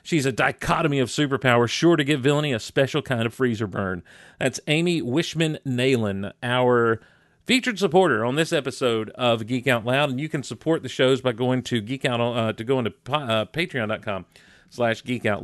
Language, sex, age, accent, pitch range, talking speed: English, male, 40-59, American, 115-155 Hz, 160 wpm